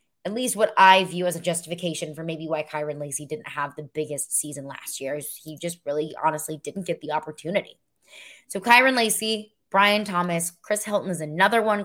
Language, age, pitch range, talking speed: English, 20-39, 160-205 Hz, 200 wpm